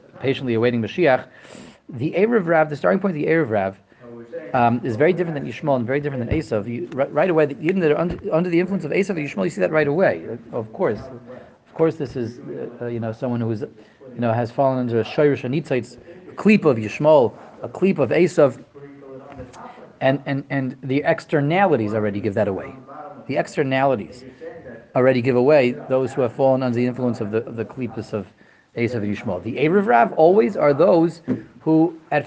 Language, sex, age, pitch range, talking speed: English, male, 30-49, 120-165 Hz, 195 wpm